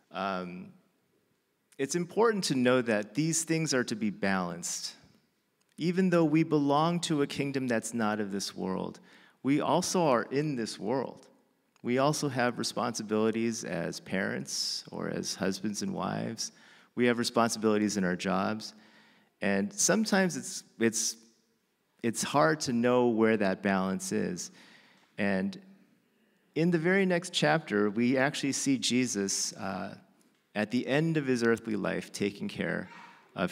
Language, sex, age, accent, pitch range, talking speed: English, male, 40-59, American, 100-150 Hz, 145 wpm